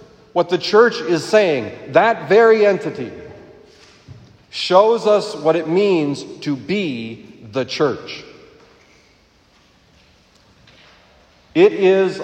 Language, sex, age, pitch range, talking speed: English, male, 40-59, 150-215 Hz, 95 wpm